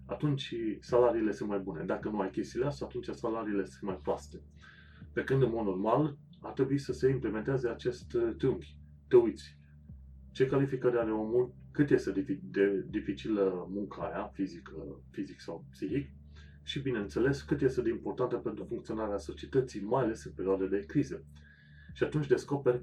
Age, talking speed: 30-49, 155 wpm